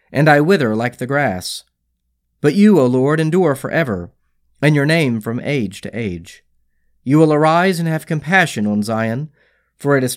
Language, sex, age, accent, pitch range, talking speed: English, male, 40-59, American, 95-155 Hz, 175 wpm